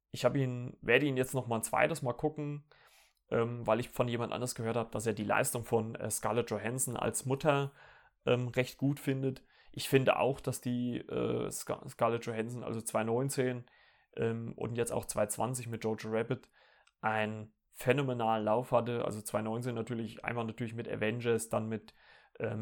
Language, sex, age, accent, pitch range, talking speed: German, male, 30-49, German, 110-130 Hz, 170 wpm